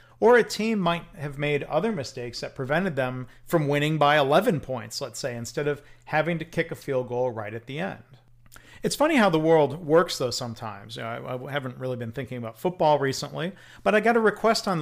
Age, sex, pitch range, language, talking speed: 40-59, male, 125-165 Hz, English, 210 wpm